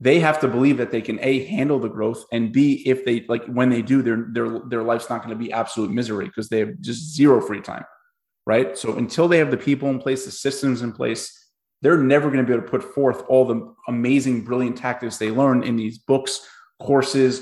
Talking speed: 240 wpm